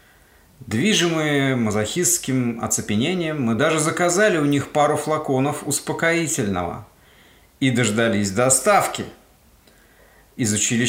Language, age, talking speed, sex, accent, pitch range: Russian, 50-69, 85 wpm, male, native, 110-155 Hz